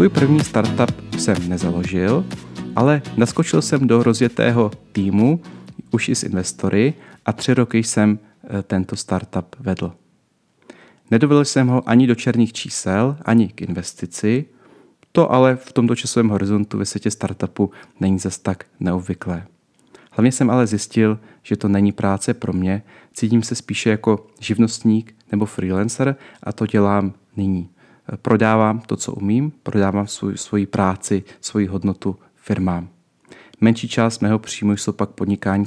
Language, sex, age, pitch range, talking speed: Czech, male, 30-49, 100-115 Hz, 140 wpm